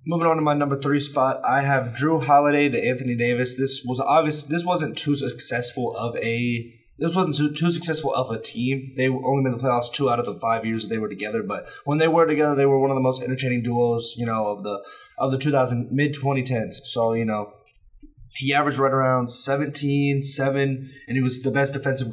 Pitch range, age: 120-140 Hz, 20-39